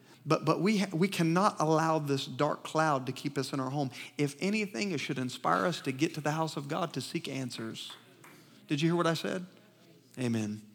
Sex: male